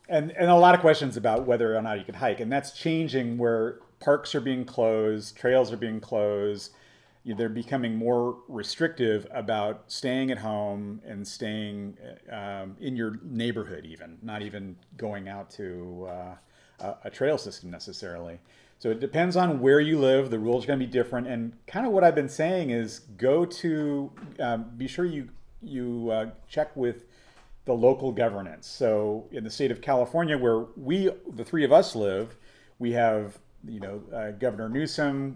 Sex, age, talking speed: male, 40-59, 180 wpm